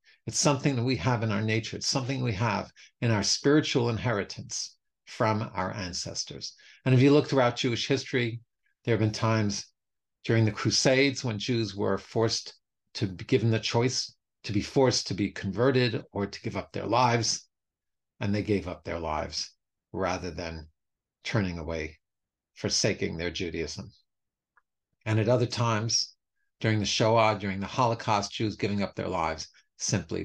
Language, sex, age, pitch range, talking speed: English, male, 50-69, 100-135 Hz, 165 wpm